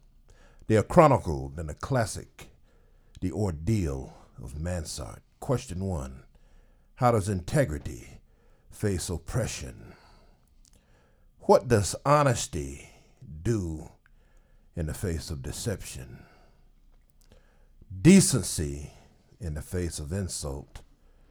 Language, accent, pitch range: English, American, 80-115 Hz